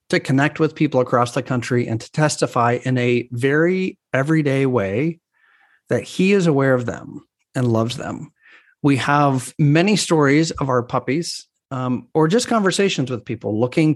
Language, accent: English, American